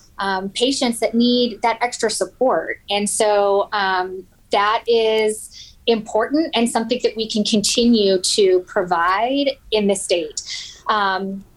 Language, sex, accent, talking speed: English, female, American, 130 wpm